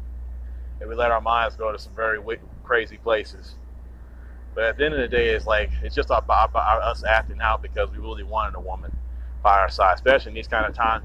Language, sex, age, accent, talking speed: English, male, 30-49, American, 230 wpm